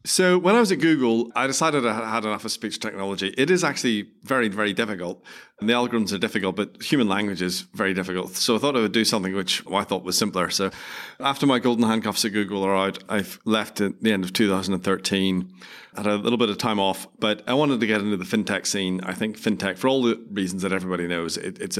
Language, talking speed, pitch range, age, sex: English, 240 wpm, 95-115 Hz, 30-49, male